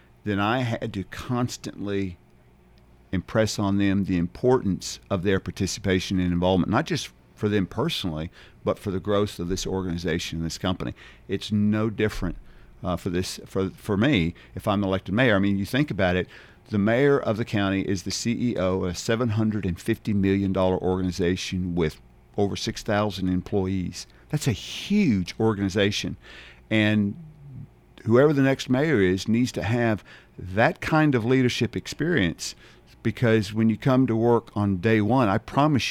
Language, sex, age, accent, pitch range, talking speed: English, male, 50-69, American, 90-115 Hz, 160 wpm